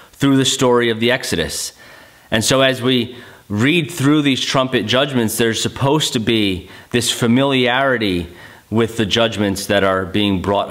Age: 30-49